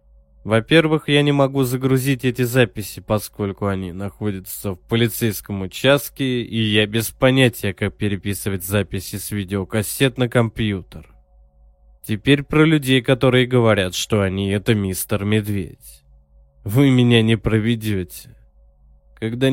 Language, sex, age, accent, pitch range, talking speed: Russian, male, 20-39, native, 95-120 Hz, 120 wpm